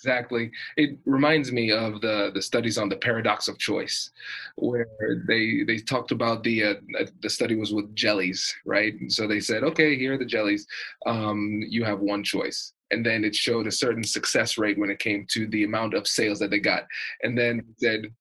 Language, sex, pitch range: English, male, 110-155 Hz